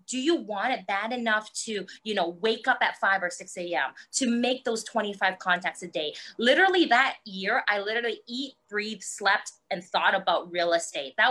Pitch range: 185-250 Hz